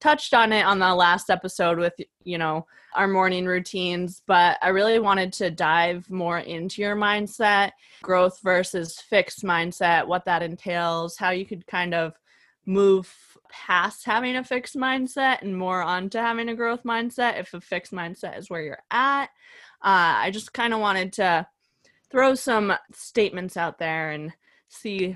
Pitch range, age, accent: 170-200 Hz, 20-39, American